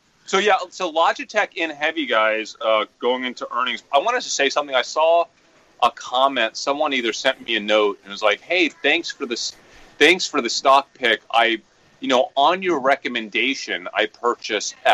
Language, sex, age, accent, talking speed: English, male, 30-49, American, 190 wpm